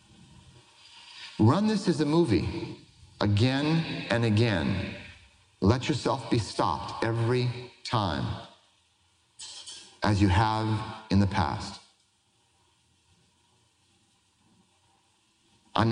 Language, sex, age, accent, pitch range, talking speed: English, male, 40-59, American, 100-135 Hz, 80 wpm